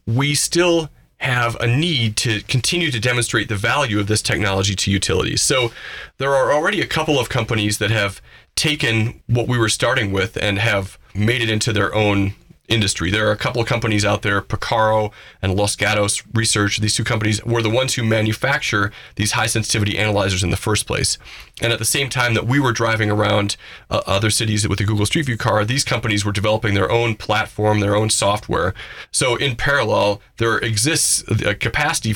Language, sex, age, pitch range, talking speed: English, male, 30-49, 105-125 Hz, 195 wpm